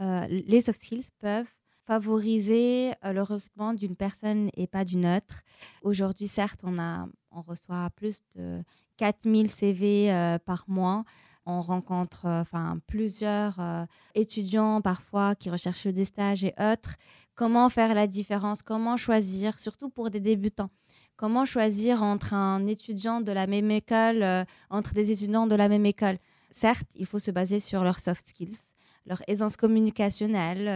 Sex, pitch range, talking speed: female, 185-215 Hz, 160 wpm